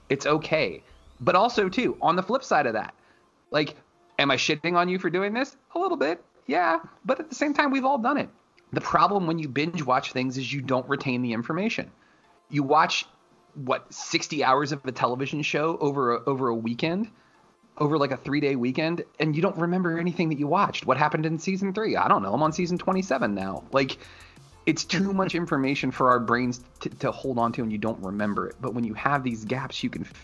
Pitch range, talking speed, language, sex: 115-160 Hz, 220 wpm, English, male